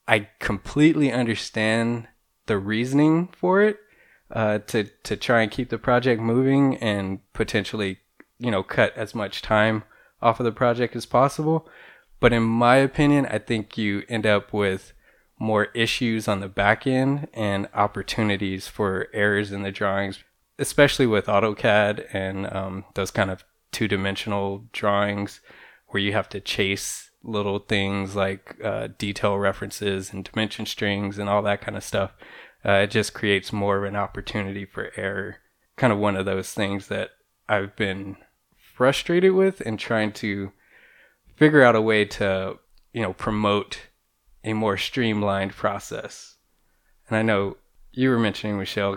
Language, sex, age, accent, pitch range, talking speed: English, male, 20-39, American, 100-115 Hz, 155 wpm